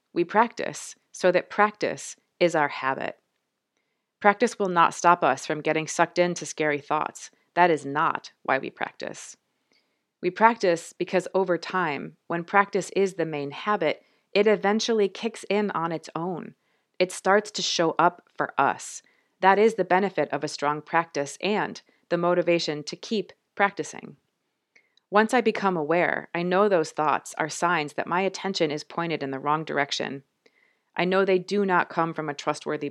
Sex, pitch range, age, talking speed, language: female, 150-190 Hz, 30-49, 170 wpm, English